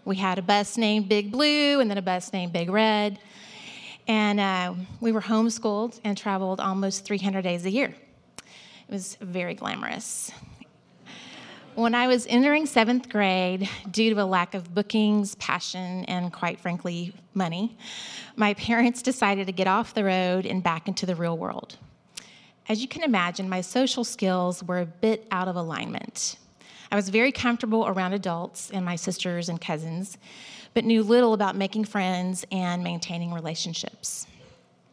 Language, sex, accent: English, female, American